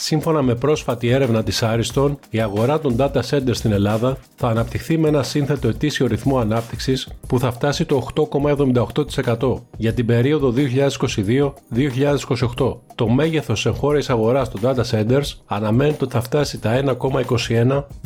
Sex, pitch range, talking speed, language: male, 115-140 Hz, 145 wpm, Greek